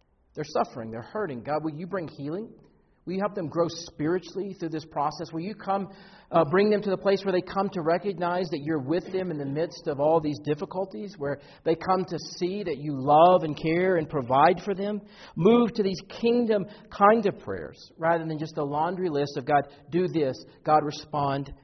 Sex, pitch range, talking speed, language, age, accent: male, 135-185 Hz, 210 wpm, English, 50-69, American